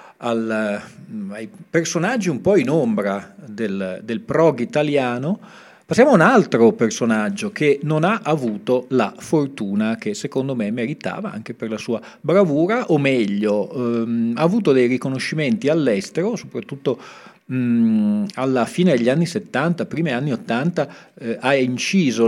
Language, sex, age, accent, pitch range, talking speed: Italian, male, 40-59, native, 115-195 Hz, 135 wpm